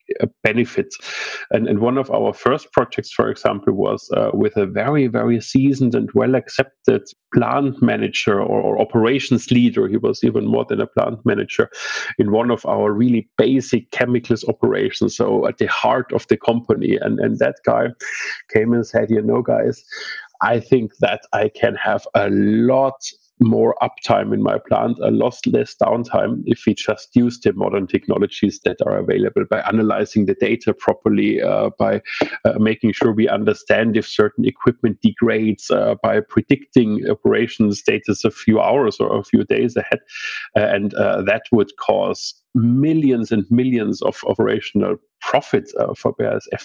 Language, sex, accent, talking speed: English, male, German, 165 wpm